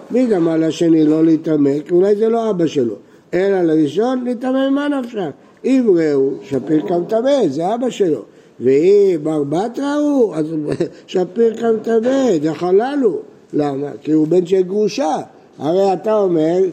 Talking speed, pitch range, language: 145 wpm, 155-220 Hz, Hebrew